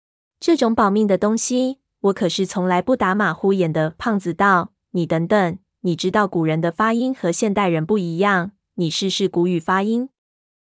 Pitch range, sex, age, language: 175-215 Hz, female, 20-39, Chinese